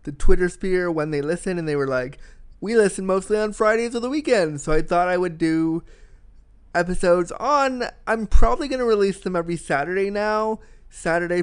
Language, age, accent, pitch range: English, 20-39, American, 150-195 Hz